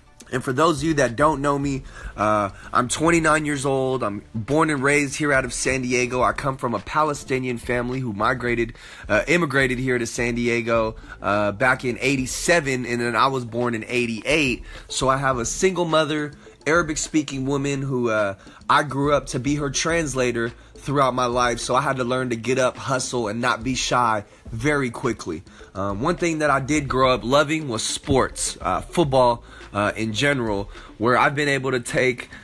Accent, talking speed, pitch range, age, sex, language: American, 195 wpm, 120-145 Hz, 20-39, male, English